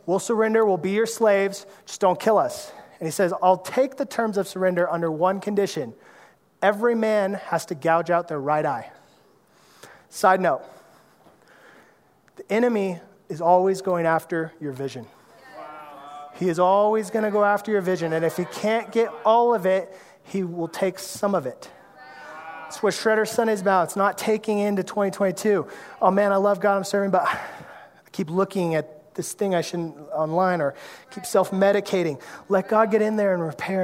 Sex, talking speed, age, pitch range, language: male, 180 wpm, 30-49, 175-215 Hz, English